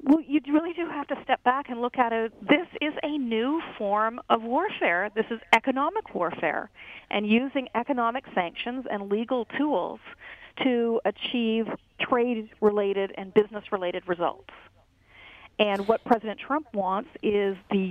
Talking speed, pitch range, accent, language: 150 wpm, 205-245 Hz, American, English